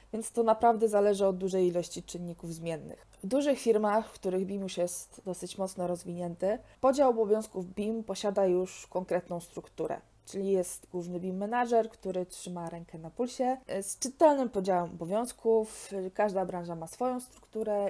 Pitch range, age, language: 180-225 Hz, 20-39, Polish